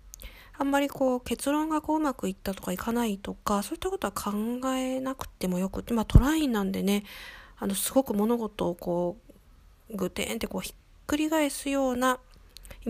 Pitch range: 185-250 Hz